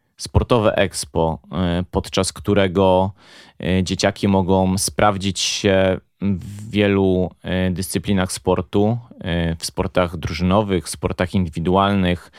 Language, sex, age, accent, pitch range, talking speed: Polish, male, 30-49, native, 90-100 Hz, 80 wpm